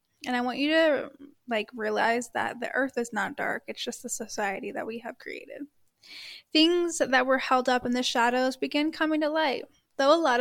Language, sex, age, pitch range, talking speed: English, female, 10-29, 235-290 Hz, 210 wpm